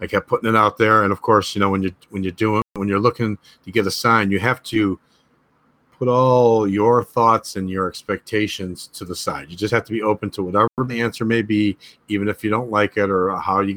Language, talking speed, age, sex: English, 250 wpm, 40-59, male